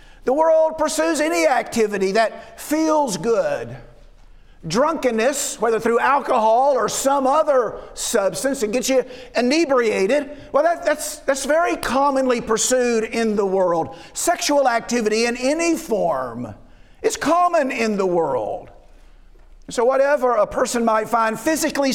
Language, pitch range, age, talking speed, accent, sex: English, 205-275 Hz, 50-69, 130 wpm, American, male